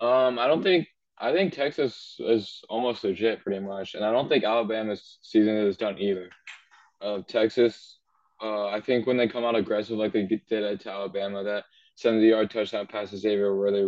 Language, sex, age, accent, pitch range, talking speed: English, male, 10-29, American, 100-115 Hz, 195 wpm